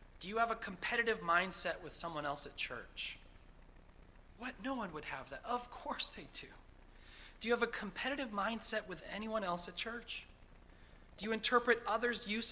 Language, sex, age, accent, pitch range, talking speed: English, male, 30-49, American, 160-230 Hz, 175 wpm